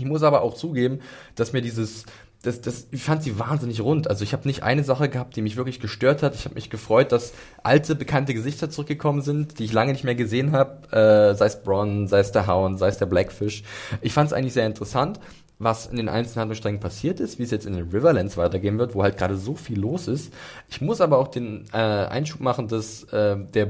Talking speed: 240 wpm